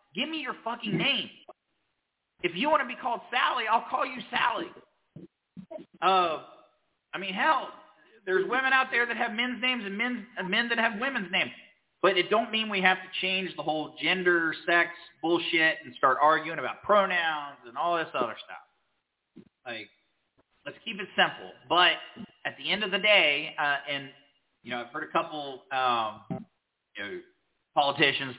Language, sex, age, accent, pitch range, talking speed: English, male, 30-49, American, 140-225 Hz, 175 wpm